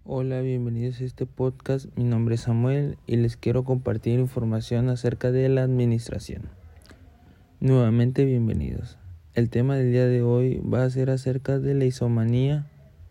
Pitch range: 110-130 Hz